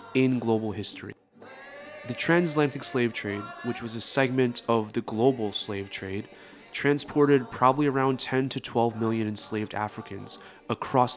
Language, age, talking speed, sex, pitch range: English, 20-39, 140 wpm, male, 105-135 Hz